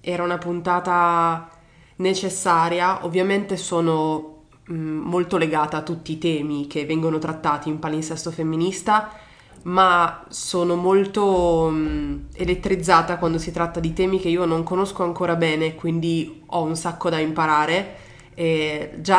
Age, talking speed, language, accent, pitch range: 20-39, 125 wpm, Italian, native, 160-185 Hz